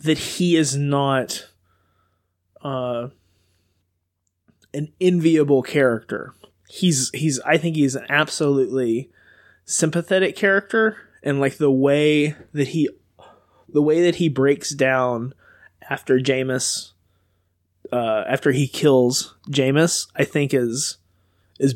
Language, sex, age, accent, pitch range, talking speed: English, male, 20-39, American, 125-155 Hz, 110 wpm